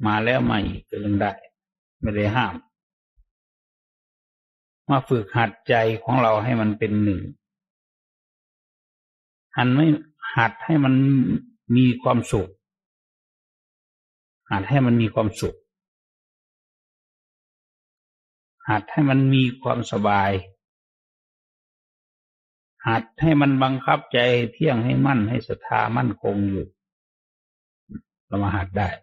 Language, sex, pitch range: English, male, 105-140 Hz